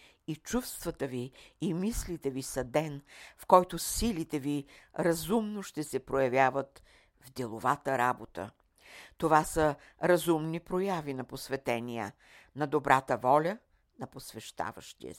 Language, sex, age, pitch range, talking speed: Bulgarian, female, 60-79, 130-160 Hz, 120 wpm